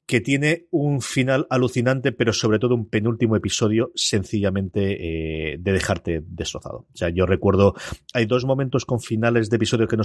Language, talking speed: Spanish, 175 wpm